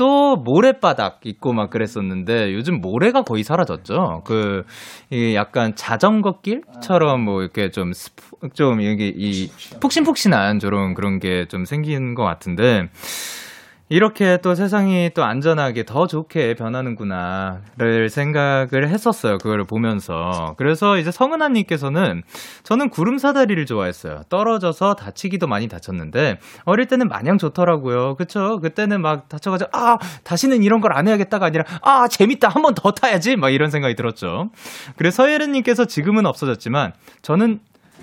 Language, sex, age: Korean, male, 20-39